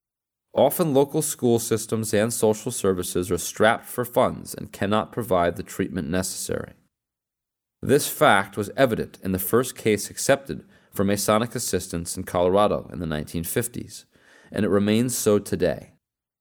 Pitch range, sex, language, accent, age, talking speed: 100-125 Hz, male, English, American, 30-49, 145 wpm